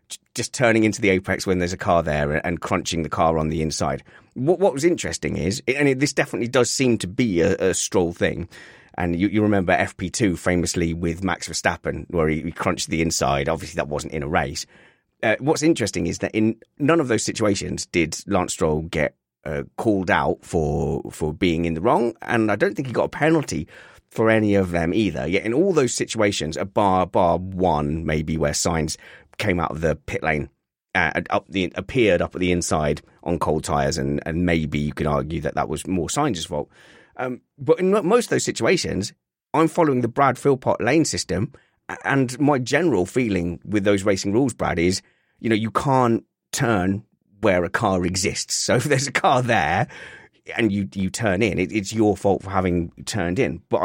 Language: English